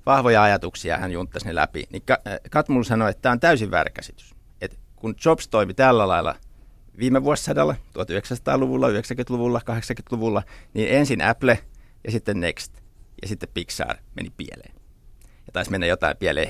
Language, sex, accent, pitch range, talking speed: Finnish, male, native, 95-130 Hz, 145 wpm